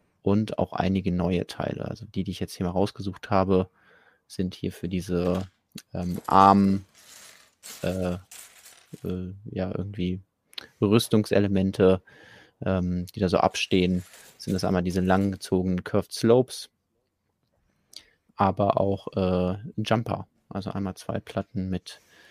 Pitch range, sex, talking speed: 95-105 Hz, male, 125 wpm